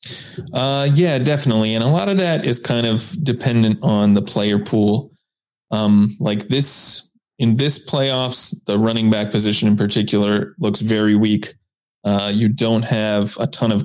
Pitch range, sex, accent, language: 105-125 Hz, male, American, English